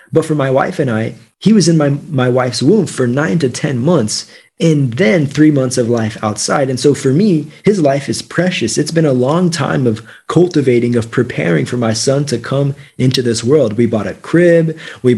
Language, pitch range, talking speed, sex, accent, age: English, 115-150 Hz, 220 wpm, male, American, 30-49